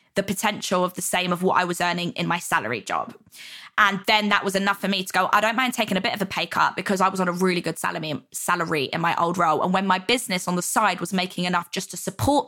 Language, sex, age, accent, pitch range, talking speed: English, female, 20-39, British, 180-215 Hz, 280 wpm